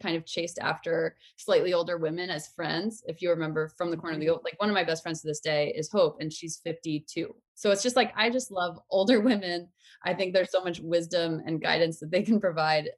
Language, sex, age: English, female, 20-39